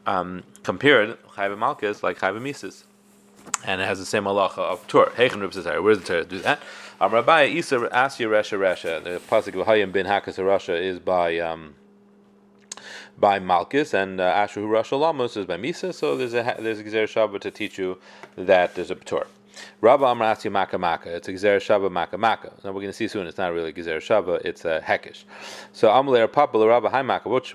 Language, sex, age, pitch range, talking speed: English, male, 30-49, 90-120 Hz, 185 wpm